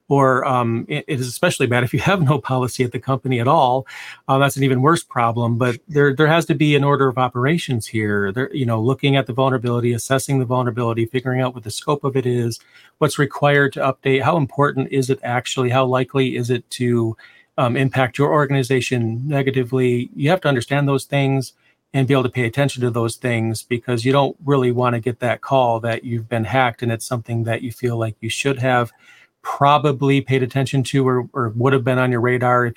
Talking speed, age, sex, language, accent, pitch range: 220 wpm, 40-59, male, English, American, 120-140 Hz